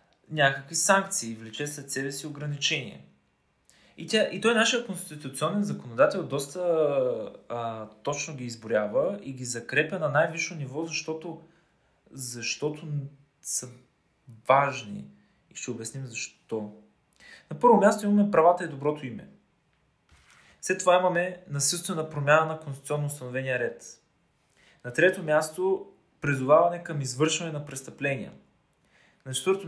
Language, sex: Bulgarian, male